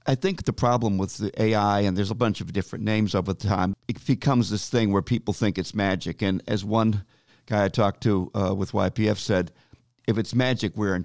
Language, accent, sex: English, American, male